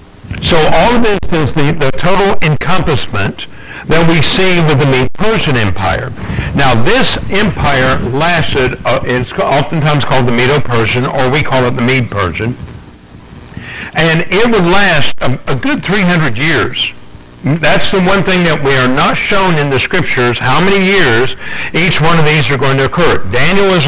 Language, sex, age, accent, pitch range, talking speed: English, male, 60-79, American, 125-165 Hz, 170 wpm